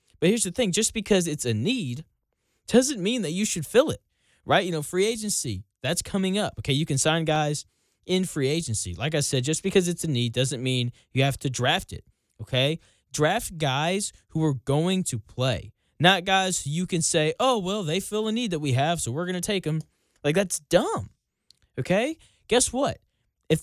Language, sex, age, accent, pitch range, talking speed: English, male, 10-29, American, 130-185 Hz, 210 wpm